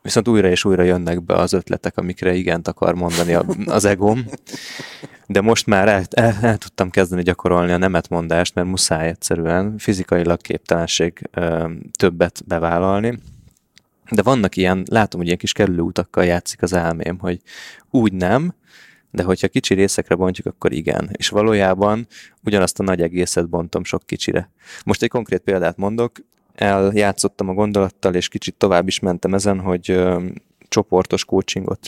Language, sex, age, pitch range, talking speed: Hungarian, male, 20-39, 90-105 Hz, 150 wpm